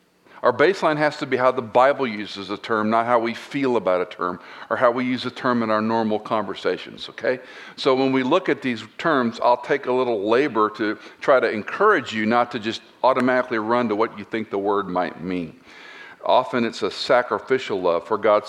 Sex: male